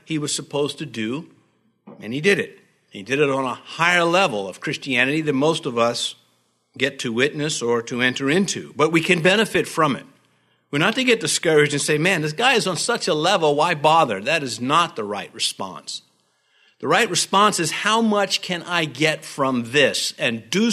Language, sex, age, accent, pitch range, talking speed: English, male, 60-79, American, 135-185 Hz, 205 wpm